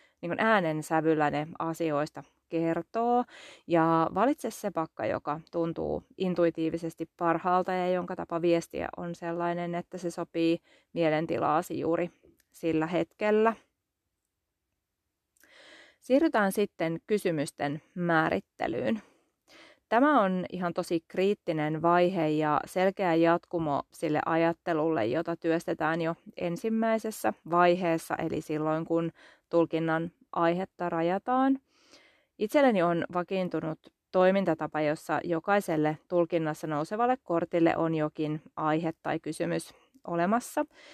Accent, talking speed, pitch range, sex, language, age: native, 100 wpm, 160-200 Hz, female, Finnish, 30-49